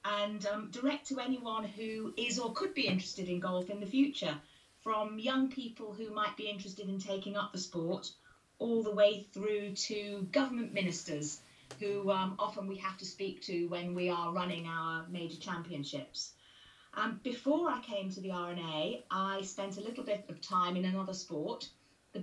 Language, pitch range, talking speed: English, 175-210 Hz, 185 wpm